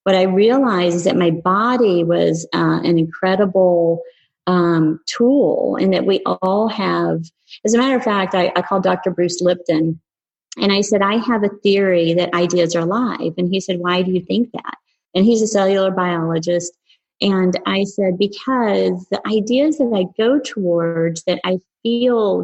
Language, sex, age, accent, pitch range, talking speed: English, female, 30-49, American, 170-200 Hz, 175 wpm